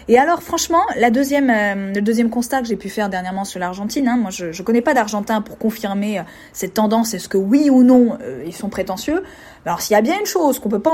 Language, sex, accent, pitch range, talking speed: French, female, French, 215-305 Hz, 270 wpm